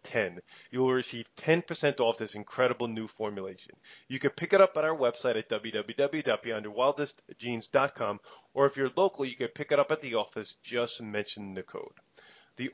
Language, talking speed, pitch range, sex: English, 175 wpm, 115-150 Hz, male